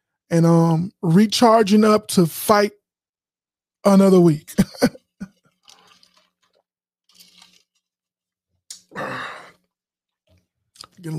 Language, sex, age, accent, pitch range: English, male, 20-39, American, 160-190 Hz